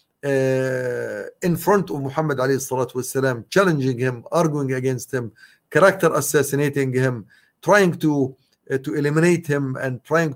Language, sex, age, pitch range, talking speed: English, male, 50-69, 135-165 Hz, 115 wpm